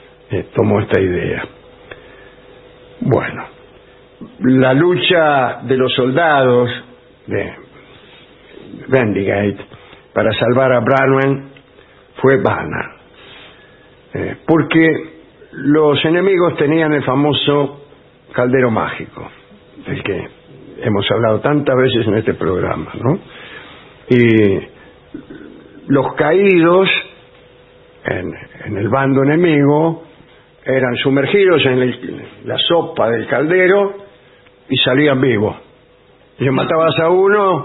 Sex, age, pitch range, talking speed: male, 60-79, 125-155 Hz, 95 wpm